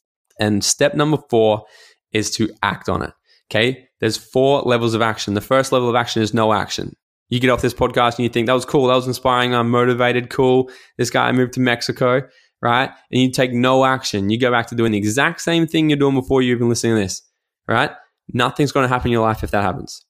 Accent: Australian